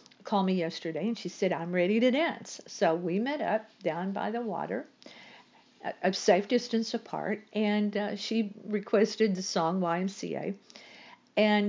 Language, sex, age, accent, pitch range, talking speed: English, female, 50-69, American, 175-230 Hz, 155 wpm